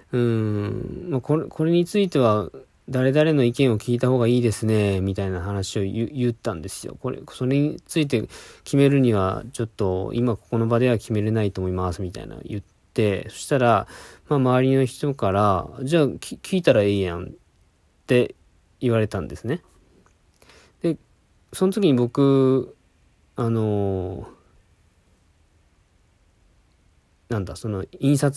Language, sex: Japanese, male